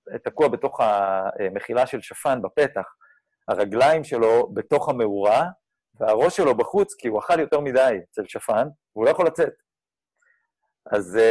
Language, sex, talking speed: Hebrew, male, 135 wpm